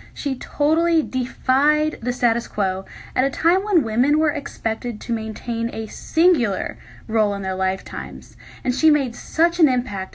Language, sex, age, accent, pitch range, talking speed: English, female, 10-29, American, 200-280 Hz, 160 wpm